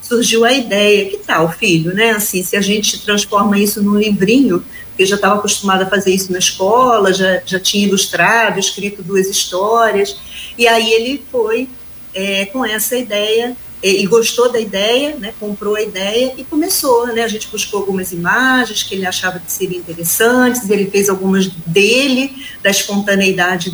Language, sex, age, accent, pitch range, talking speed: Portuguese, female, 50-69, Brazilian, 185-230 Hz, 175 wpm